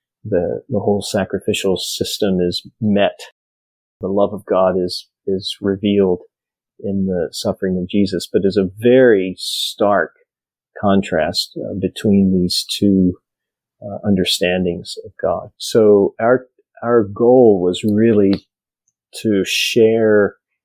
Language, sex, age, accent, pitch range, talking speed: English, male, 40-59, American, 95-105 Hz, 120 wpm